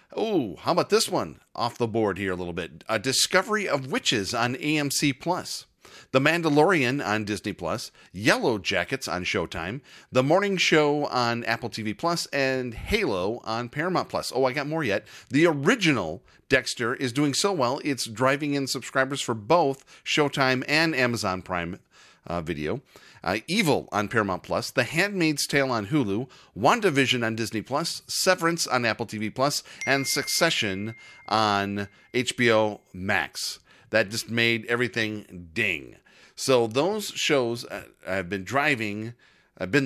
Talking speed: 155 wpm